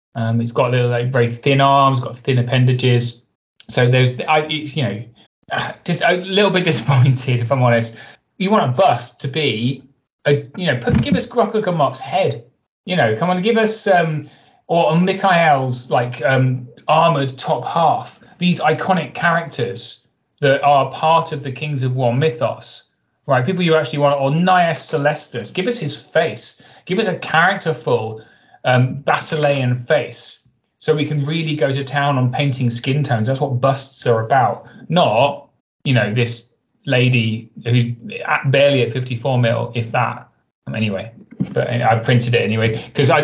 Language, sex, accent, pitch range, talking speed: English, male, British, 120-155 Hz, 170 wpm